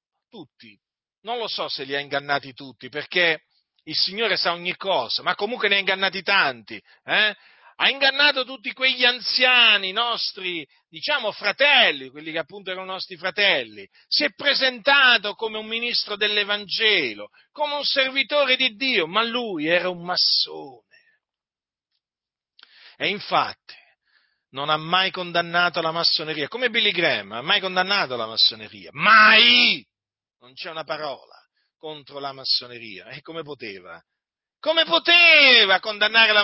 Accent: native